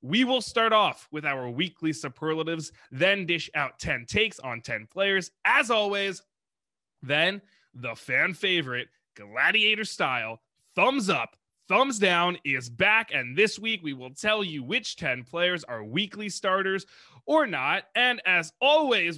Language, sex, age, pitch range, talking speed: English, male, 20-39, 145-205 Hz, 150 wpm